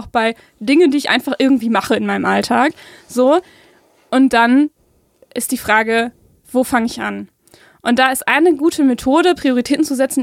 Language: German